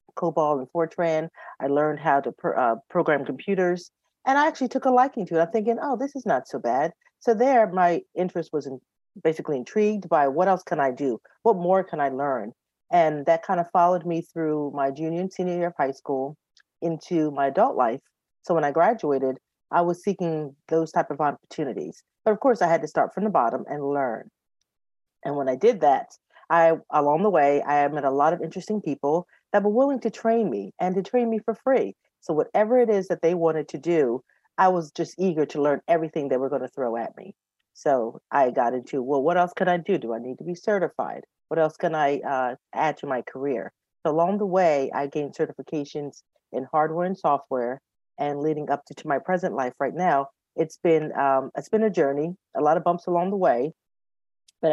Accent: American